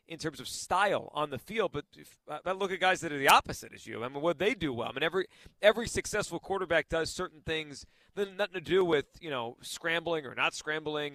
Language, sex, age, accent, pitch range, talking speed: English, male, 40-59, American, 150-185 Hz, 250 wpm